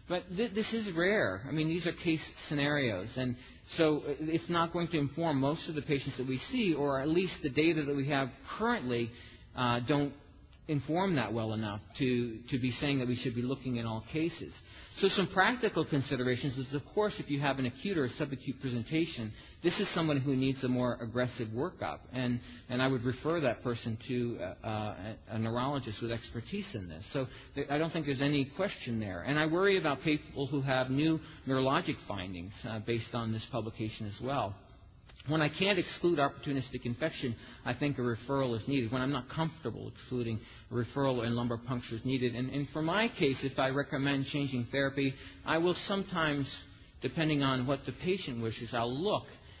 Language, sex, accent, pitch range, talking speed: English, male, American, 120-150 Hz, 195 wpm